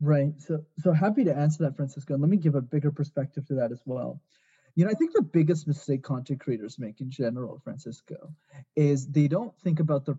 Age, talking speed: 20-39, 225 wpm